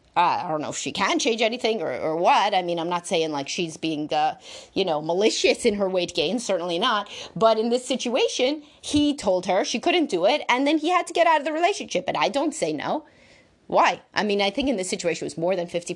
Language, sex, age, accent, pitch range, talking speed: English, female, 30-49, American, 190-275 Hz, 260 wpm